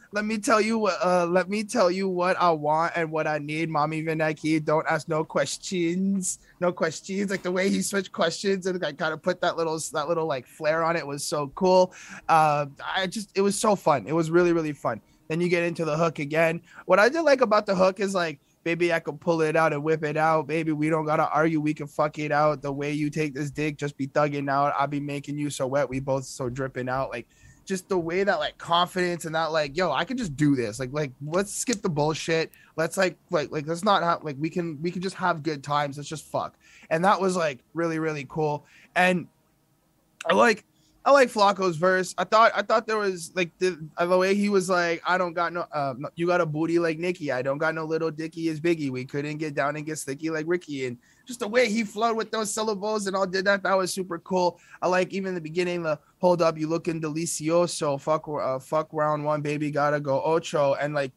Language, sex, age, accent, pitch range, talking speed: English, male, 20-39, American, 150-185 Hz, 250 wpm